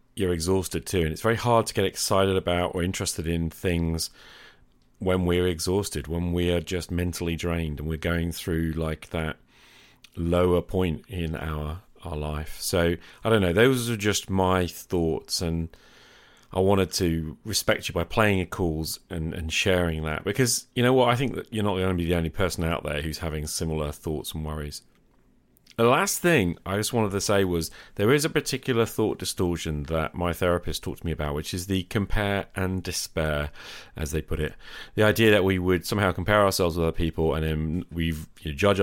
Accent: British